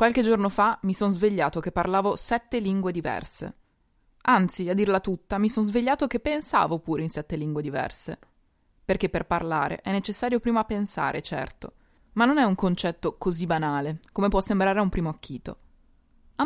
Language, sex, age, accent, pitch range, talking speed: Italian, female, 20-39, native, 160-210 Hz, 175 wpm